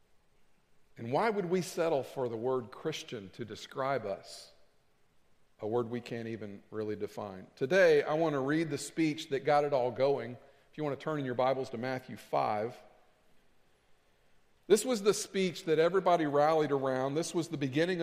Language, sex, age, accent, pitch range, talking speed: English, male, 50-69, American, 135-185 Hz, 180 wpm